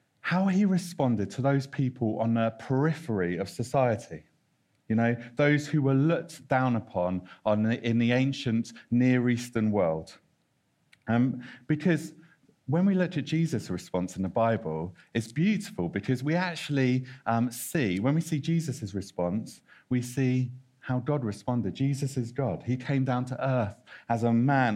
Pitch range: 115-150 Hz